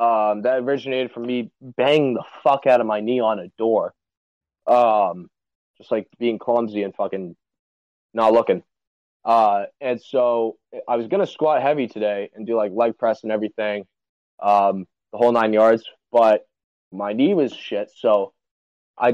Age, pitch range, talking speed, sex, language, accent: 20-39, 105-130 Hz, 165 wpm, male, English, American